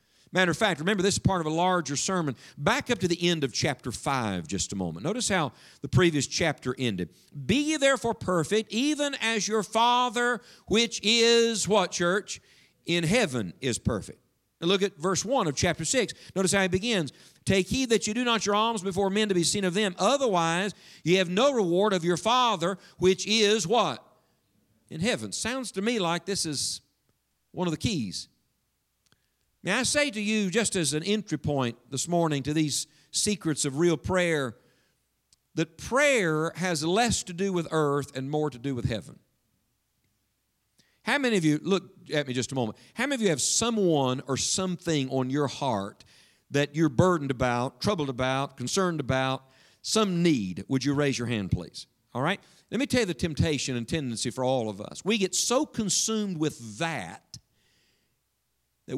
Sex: male